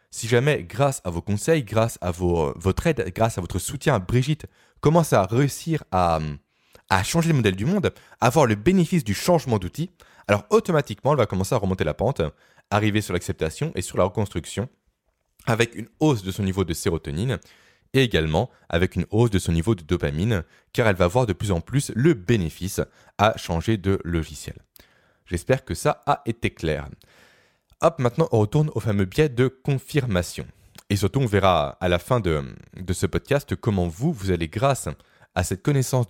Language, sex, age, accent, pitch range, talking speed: French, male, 20-39, French, 90-130 Hz, 190 wpm